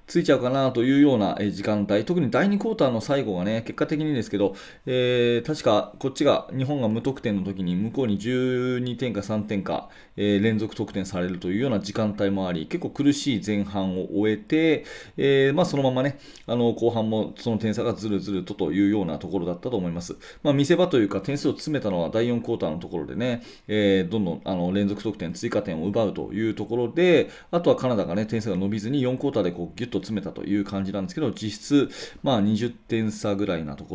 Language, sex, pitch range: Japanese, male, 100-130 Hz